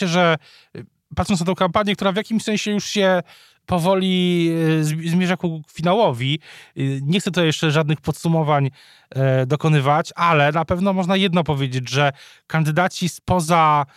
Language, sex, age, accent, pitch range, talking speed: Polish, male, 20-39, native, 150-185 Hz, 135 wpm